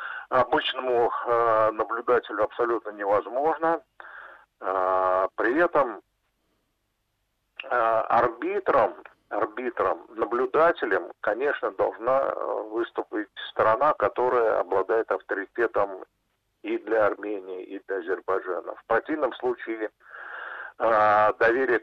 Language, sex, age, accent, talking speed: Russian, male, 50-69, native, 70 wpm